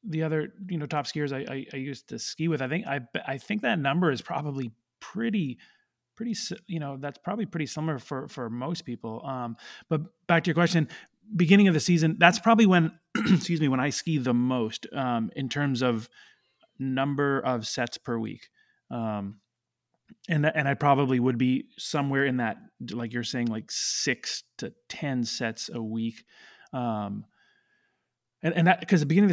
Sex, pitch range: male, 125-160 Hz